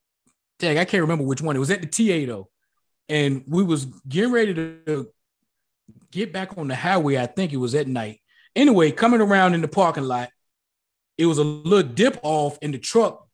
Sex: male